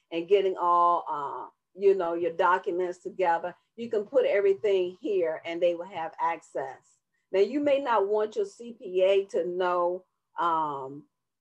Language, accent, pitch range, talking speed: English, American, 165-195 Hz, 155 wpm